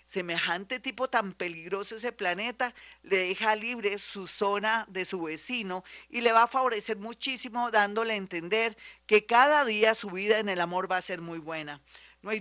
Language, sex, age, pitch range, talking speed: Spanish, female, 40-59, 170-210 Hz, 185 wpm